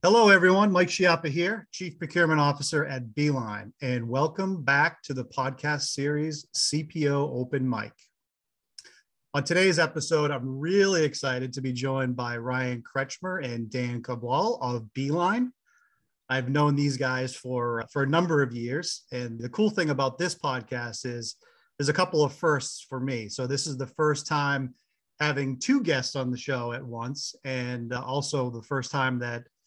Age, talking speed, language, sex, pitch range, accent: 30-49, 165 wpm, English, male, 120-150 Hz, American